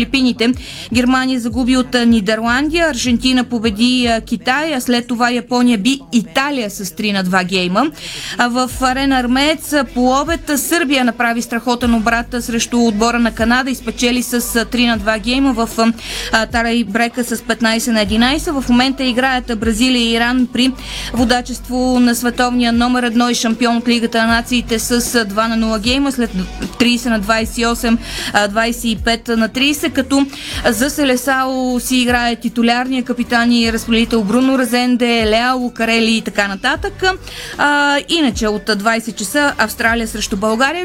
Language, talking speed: Bulgarian, 145 wpm